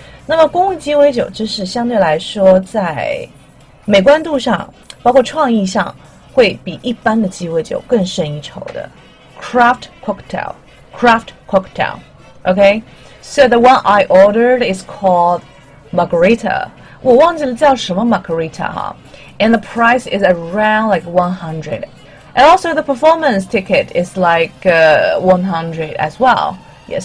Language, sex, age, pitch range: Chinese, female, 30-49, 165-245 Hz